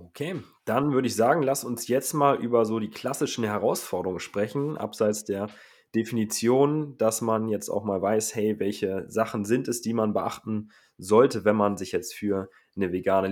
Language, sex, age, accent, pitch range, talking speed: German, male, 20-39, German, 100-120 Hz, 180 wpm